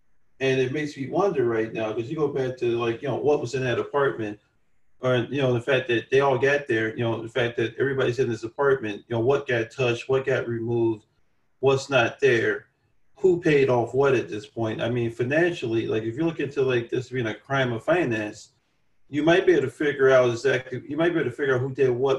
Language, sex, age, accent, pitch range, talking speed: English, male, 40-59, American, 115-140 Hz, 245 wpm